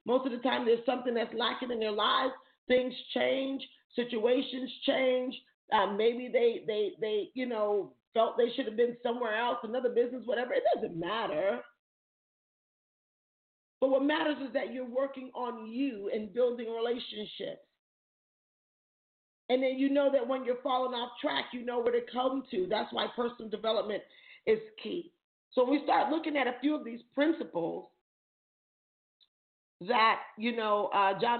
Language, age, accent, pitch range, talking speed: English, 40-59, American, 215-270 Hz, 160 wpm